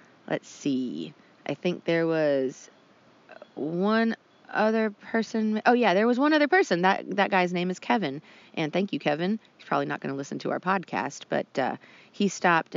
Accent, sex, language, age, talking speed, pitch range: American, female, English, 30-49, 185 wpm, 155-195 Hz